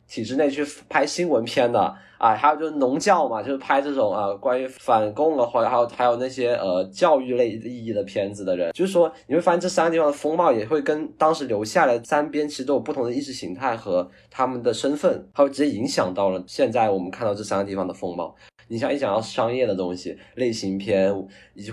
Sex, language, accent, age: male, Chinese, native, 20-39